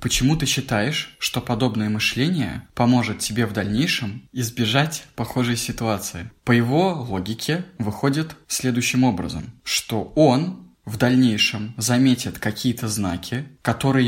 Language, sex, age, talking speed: Russian, male, 20-39, 115 wpm